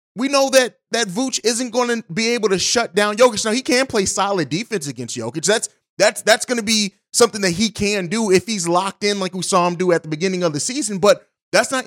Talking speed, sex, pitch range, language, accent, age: 255 wpm, male, 175-225 Hz, English, American, 30-49